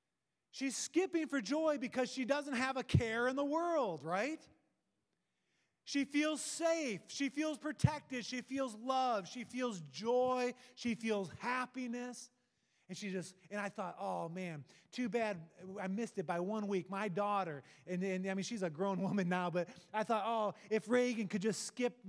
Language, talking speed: English, 175 wpm